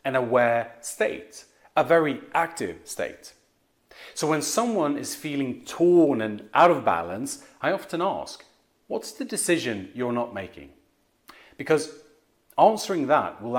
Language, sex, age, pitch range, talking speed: English, male, 40-59, 115-165 Hz, 130 wpm